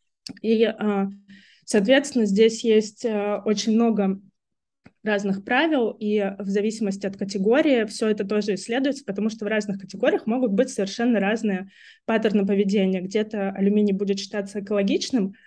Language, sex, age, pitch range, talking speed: Russian, female, 20-39, 195-235 Hz, 130 wpm